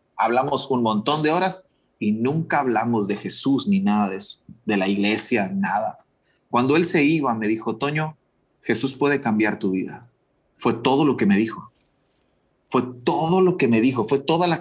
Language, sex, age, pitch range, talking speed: Spanish, male, 30-49, 105-140 Hz, 185 wpm